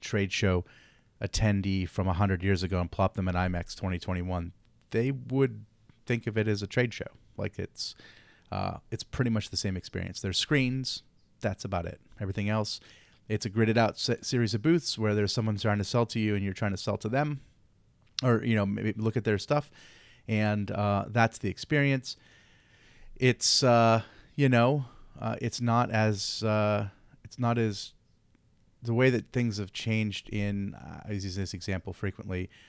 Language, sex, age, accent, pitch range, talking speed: English, male, 30-49, American, 100-115 Hz, 180 wpm